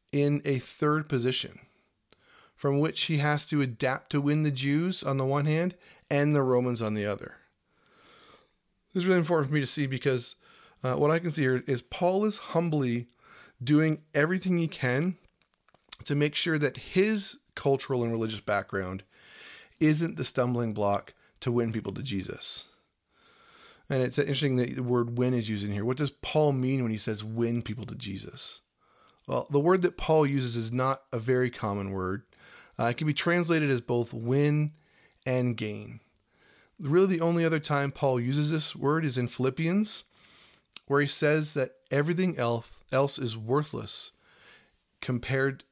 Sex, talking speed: male, 170 wpm